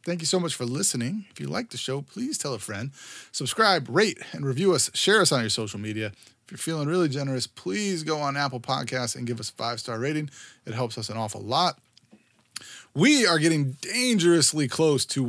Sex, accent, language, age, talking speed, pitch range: male, American, English, 20-39, 210 wpm, 120-165 Hz